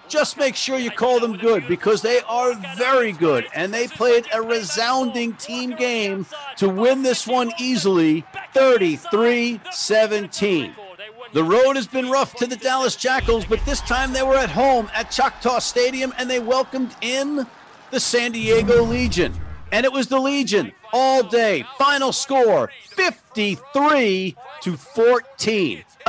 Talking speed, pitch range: 145 wpm, 220-265 Hz